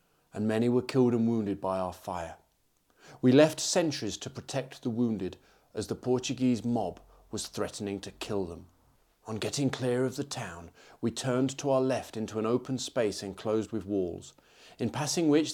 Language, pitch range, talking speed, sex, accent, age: English, 105-130 Hz, 180 wpm, male, British, 40-59